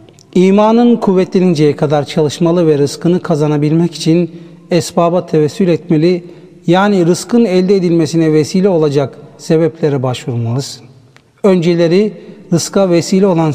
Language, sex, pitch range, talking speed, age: Turkish, male, 145-175 Hz, 100 wpm, 60-79